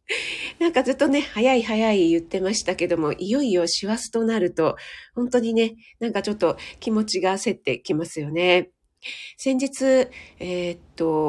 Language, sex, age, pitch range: Japanese, female, 40-59, 180-255 Hz